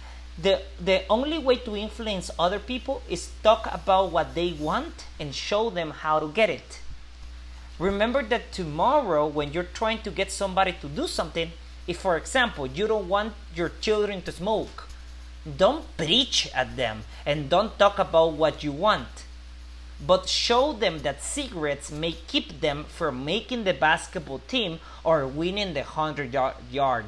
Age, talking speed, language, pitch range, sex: 30-49, 155 wpm, English, 135-220 Hz, male